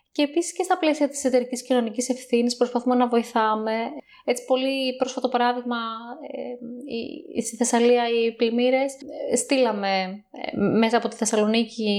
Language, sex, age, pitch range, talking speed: Greek, female, 20-39, 225-275 Hz, 140 wpm